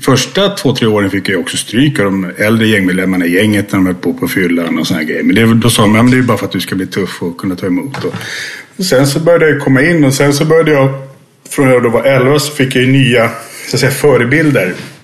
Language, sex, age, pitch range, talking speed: English, male, 30-49, 95-130 Hz, 250 wpm